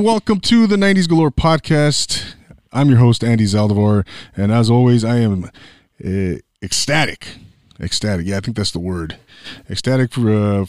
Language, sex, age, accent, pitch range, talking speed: English, male, 20-39, American, 100-130 Hz, 150 wpm